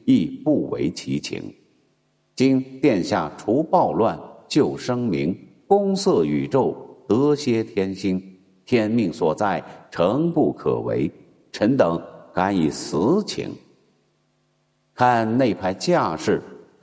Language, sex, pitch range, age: Chinese, male, 80-130 Hz, 50-69